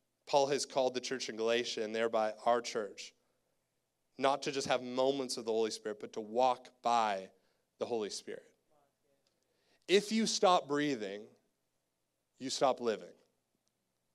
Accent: American